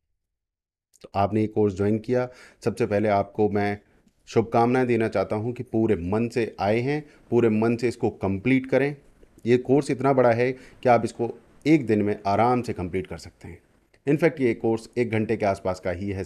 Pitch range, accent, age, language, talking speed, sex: 95-120 Hz, Indian, 30-49, English, 190 wpm, male